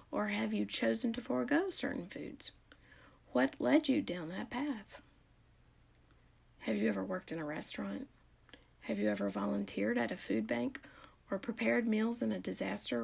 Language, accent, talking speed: English, American, 160 wpm